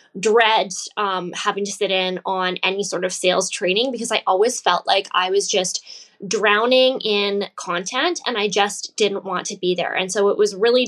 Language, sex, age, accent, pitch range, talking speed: English, female, 10-29, American, 200-255 Hz, 200 wpm